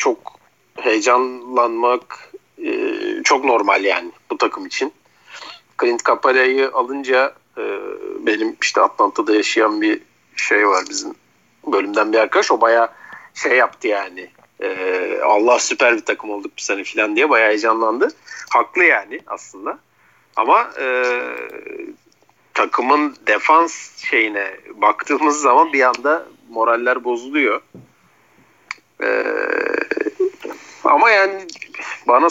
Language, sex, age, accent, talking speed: Turkish, male, 50-69, native, 110 wpm